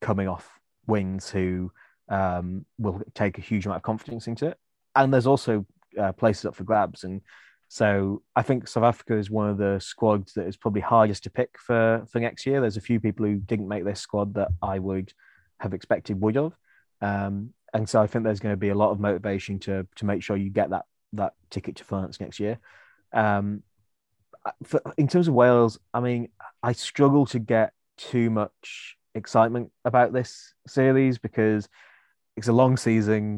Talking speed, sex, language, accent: 195 wpm, male, English, British